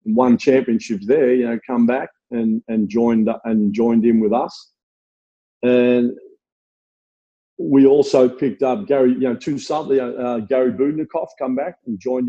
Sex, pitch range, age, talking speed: male, 120-145 Hz, 50-69, 160 wpm